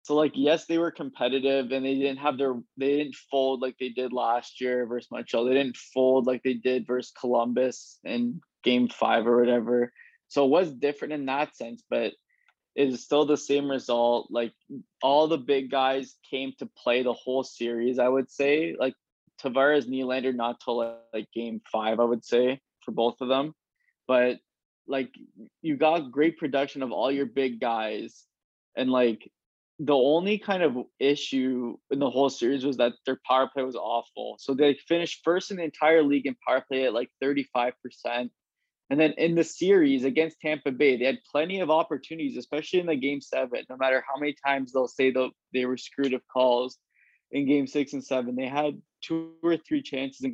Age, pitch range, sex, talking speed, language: 20-39, 125-145 Hz, male, 195 wpm, English